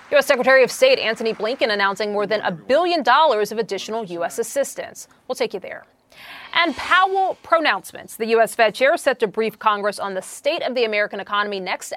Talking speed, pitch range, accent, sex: 195 wpm, 210-280 Hz, American, female